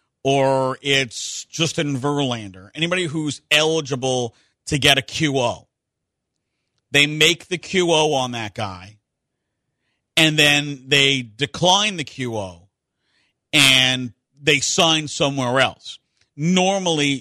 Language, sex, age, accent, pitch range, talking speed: English, male, 50-69, American, 125-160 Hz, 105 wpm